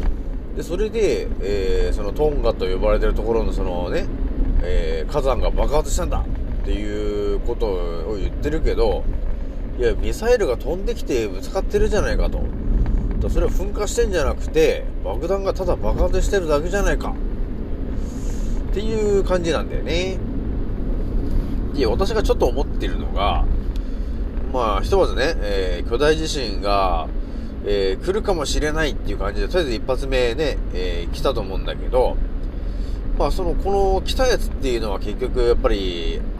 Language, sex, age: Japanese, male, 40-59